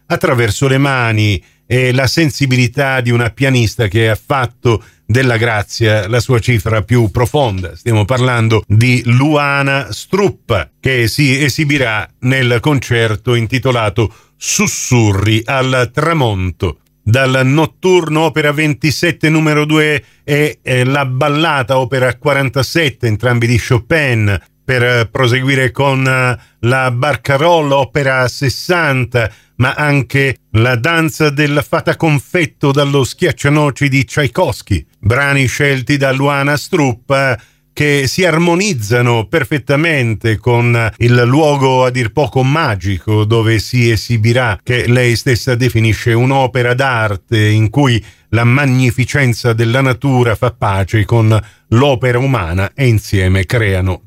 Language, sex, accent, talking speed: Italian, male, native, 115 wpm